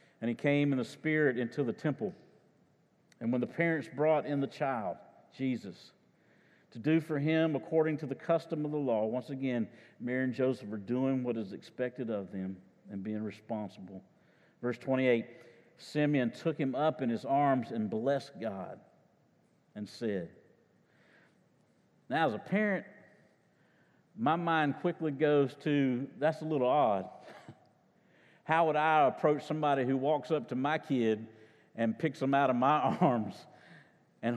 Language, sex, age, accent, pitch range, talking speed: English, male, 50-69, American, 115-150 Hz, 155 wpm